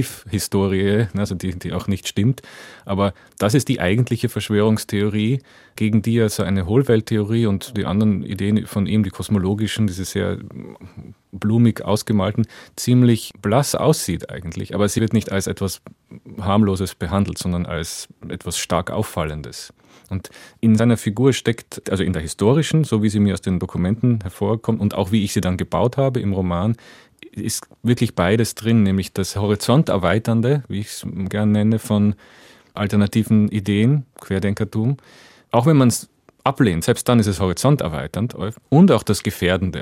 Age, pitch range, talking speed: 30-49, 95-115 Hz, 160 wpm